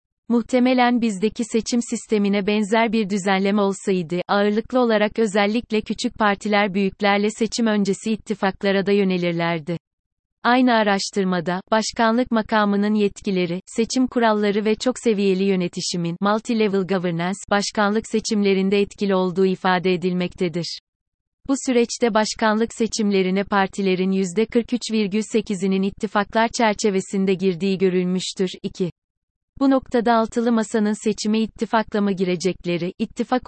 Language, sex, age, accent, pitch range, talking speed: Turkish, female, 30-49, native, 190-220 Hz, 100 wpm